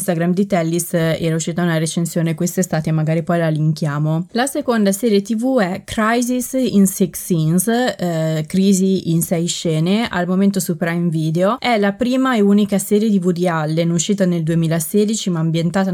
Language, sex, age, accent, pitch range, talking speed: Italian, female, 20-39, native, 170-205 Hz, 175 wpm